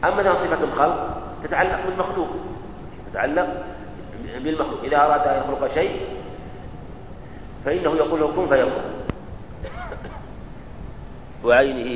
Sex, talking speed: male, 90 wpm